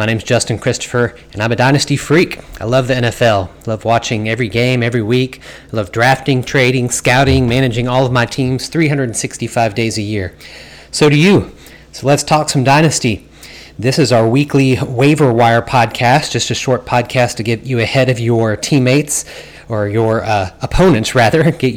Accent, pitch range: American, 110-130 Hz